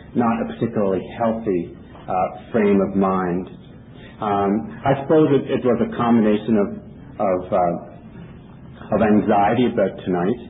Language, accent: English, American